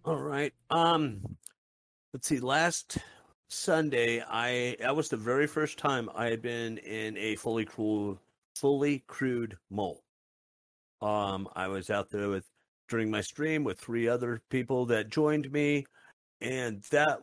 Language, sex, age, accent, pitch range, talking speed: English, male, 50-69, American, 105-125 Hz, 155 wpm